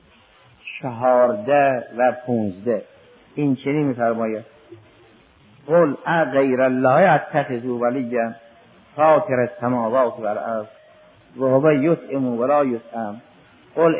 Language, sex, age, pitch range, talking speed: Persian, male, 50-69, 115-145 Hz, 110 wpm